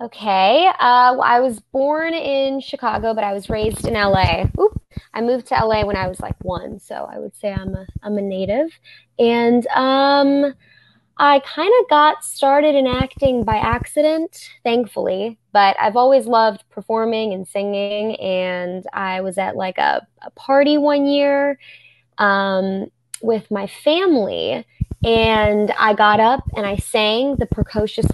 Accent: American